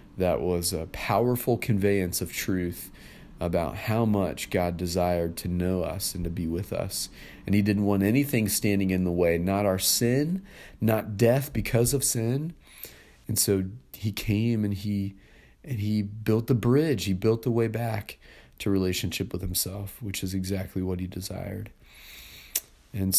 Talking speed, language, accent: 165 wpm, English, American